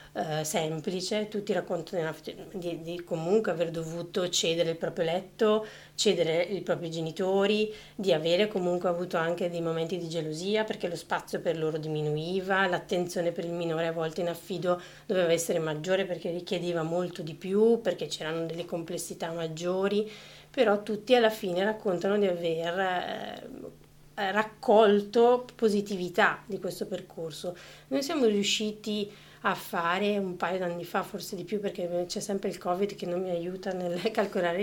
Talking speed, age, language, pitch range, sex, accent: 150 wpm, 30-49, Italian, 170-210 Hz, female, native